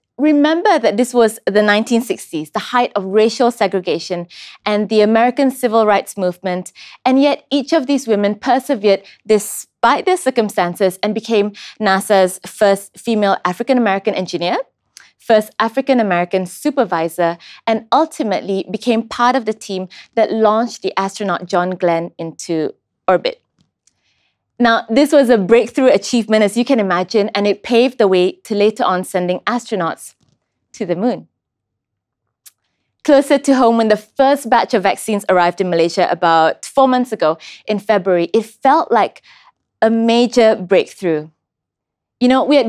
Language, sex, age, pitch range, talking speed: English, female, 20-39, 190-250 Hz, 145 wpm